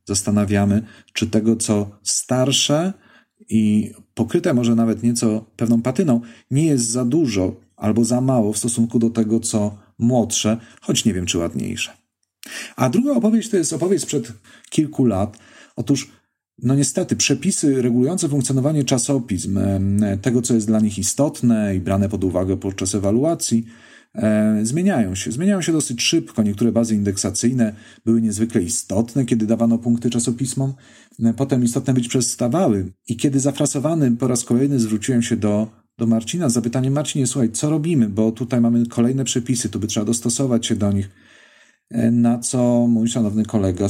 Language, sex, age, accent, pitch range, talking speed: Polish, male, 40-59, native, 105-130 Hz, 150 wpm